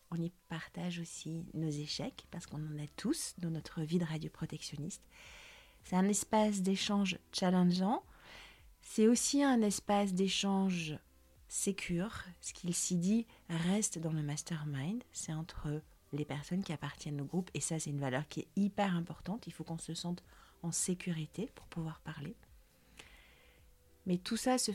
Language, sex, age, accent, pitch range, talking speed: French, female, 40-59, French, 160-200 Hz, 160 wpm